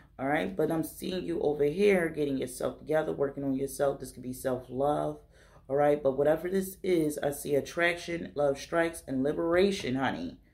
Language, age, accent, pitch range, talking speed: English, 30-49, American, 130-170 Hz, 170 wpm